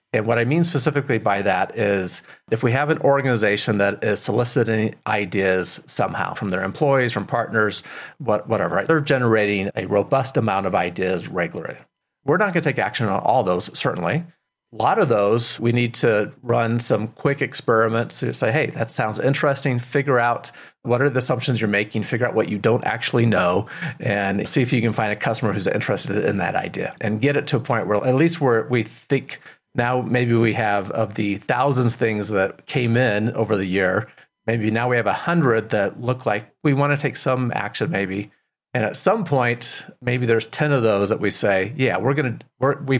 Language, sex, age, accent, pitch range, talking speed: English, male, 40-59, American, 105-135 Hz, 205 wpm